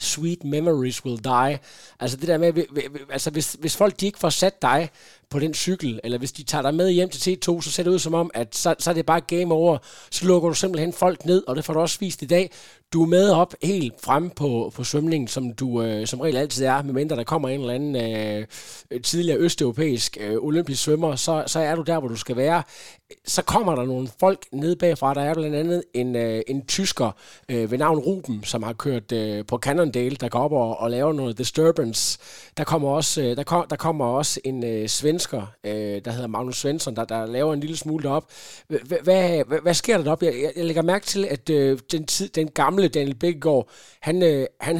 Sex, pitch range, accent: male, 130-170 Hz, native